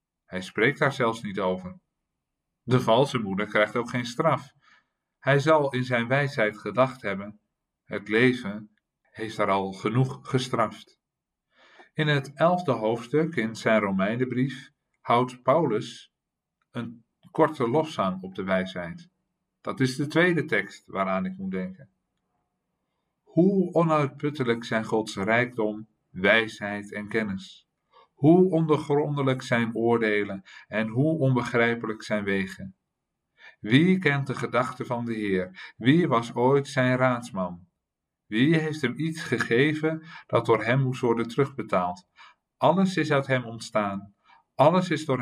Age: 50-69